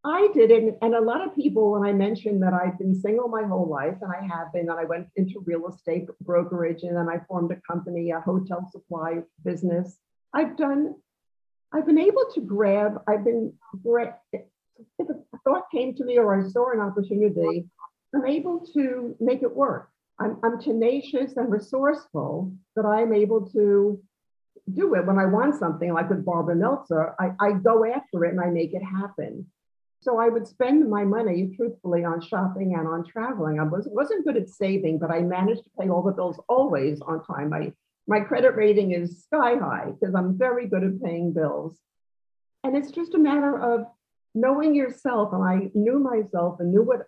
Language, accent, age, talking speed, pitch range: English, American, 50-69, 195 wpm, 175-245 Hz